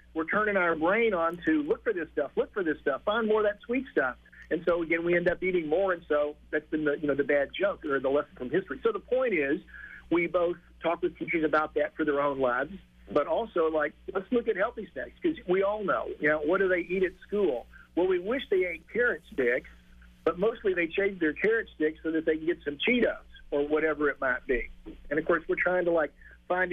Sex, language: male, English